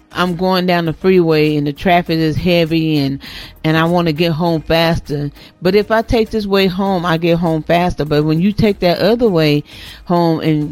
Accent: American